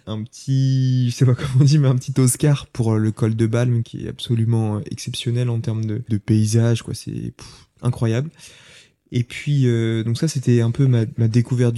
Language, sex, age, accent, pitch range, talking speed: French, male, 20-39, French, 115-130 Hz, 205 wpm